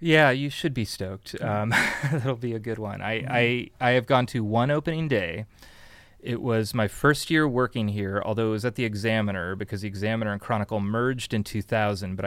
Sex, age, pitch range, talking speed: male, 30-49, 100-125 Hz, 200 wpm